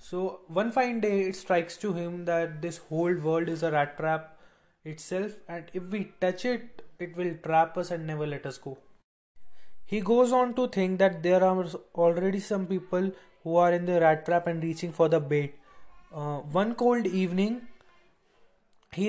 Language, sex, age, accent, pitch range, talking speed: English, male, 20-39, Indian, 160-190 Hz, 180 wpm